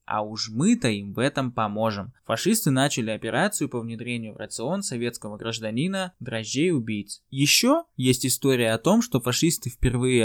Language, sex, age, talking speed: Russian, male, 20-39, 145 wpm